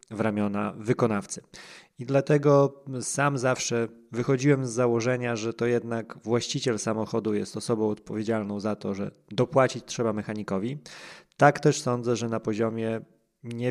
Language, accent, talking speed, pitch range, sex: Polish, native, 135 wpm, 105-130 Hz, male